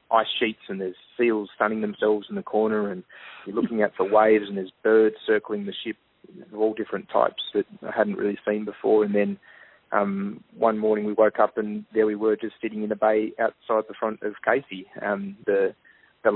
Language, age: English, 20-39